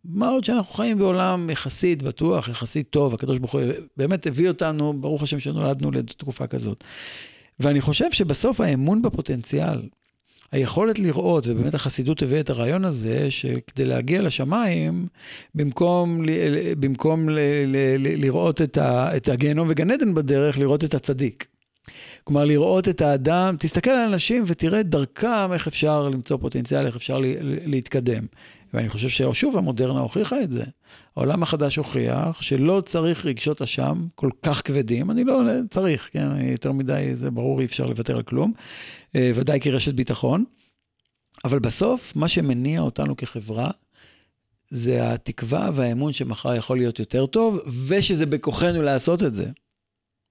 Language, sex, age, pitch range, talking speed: Hebrew, male, 50-69, 130-165 Hz, 150 wpm